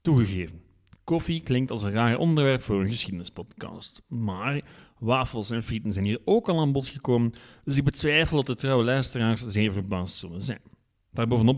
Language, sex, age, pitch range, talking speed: Dutch, male, 40-59, 100-140 Hz, 170 wpm